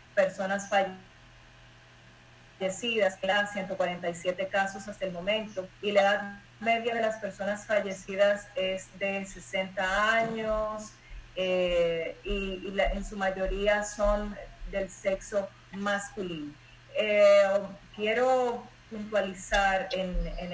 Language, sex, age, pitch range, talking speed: Spanish, female, 30-49, 180-205 Hz, 100 wpm